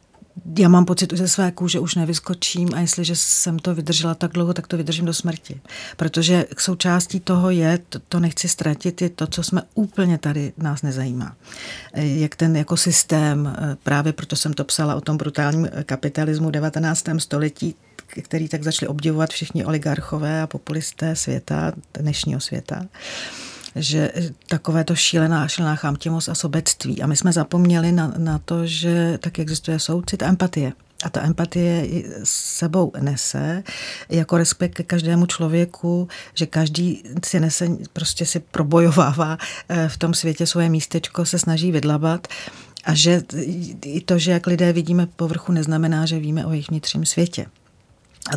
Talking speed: 155 wpm